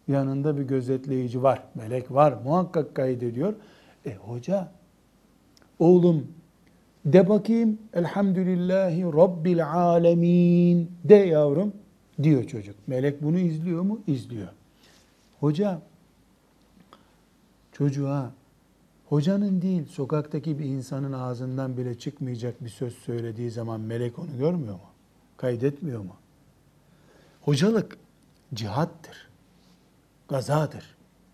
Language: Turkish